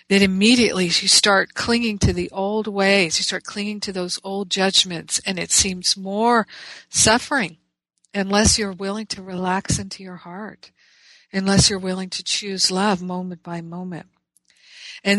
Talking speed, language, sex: 155 wpm, English, female